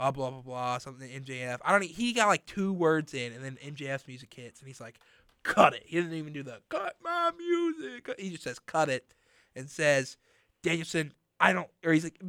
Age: 20-39